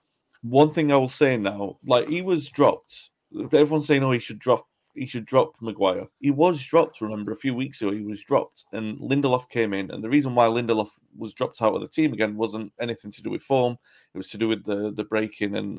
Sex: male